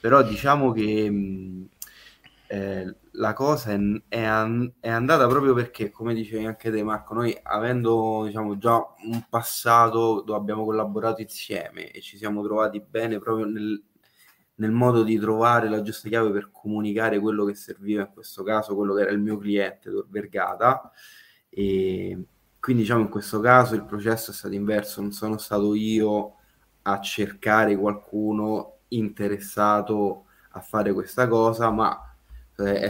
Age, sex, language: 20-39, male, Italian